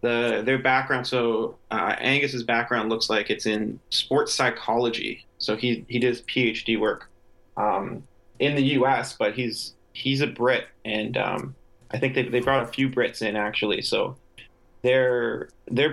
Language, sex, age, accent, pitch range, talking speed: English, male, 20-39, American, 115-130 Hz, 160 wpm